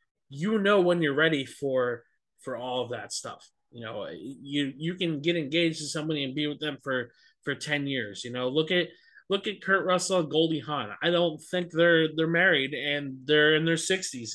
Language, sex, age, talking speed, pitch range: English, male, 20-39, 210 wpm, 130-165 Hz